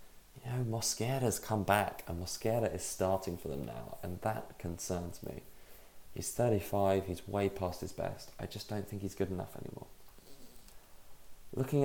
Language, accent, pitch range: English, British, 95-110 Hz